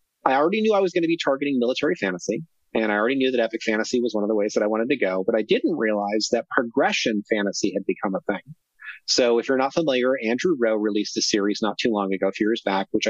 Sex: male